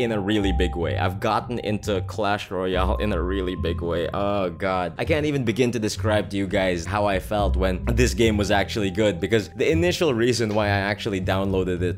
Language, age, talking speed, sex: English, 20-39, 220 wpm, male